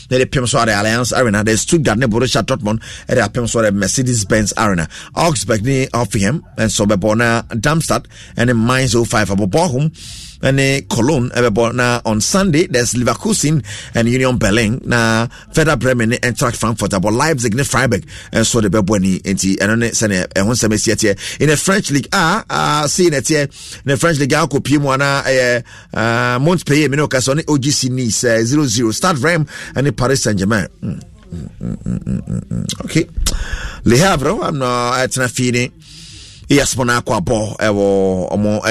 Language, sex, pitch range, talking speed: English, male, 105-145 Hz, 170 wpm